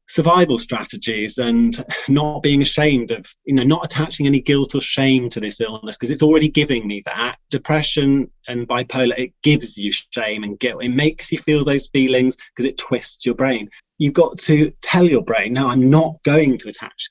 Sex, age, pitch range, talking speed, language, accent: male, 30-49, 125-155 Hz, 195 wpm, English, British